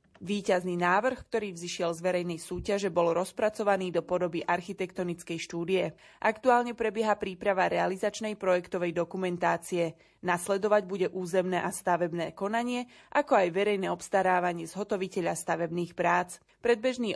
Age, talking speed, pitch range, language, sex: 20-39, 115 wpm, 175-200 Hz, Slovak, female